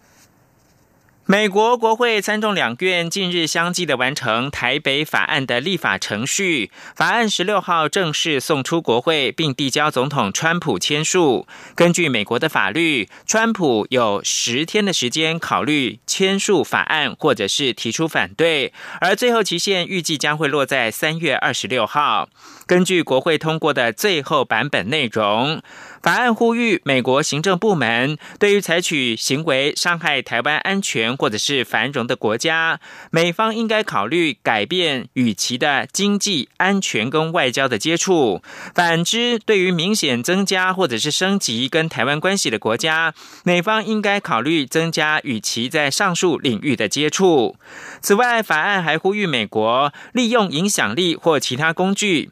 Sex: male